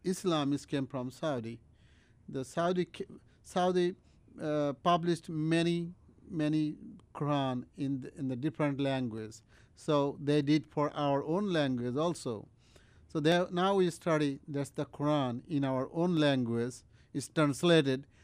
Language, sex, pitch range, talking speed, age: English, male, 130-175 Hz, 130 wpm, 50-69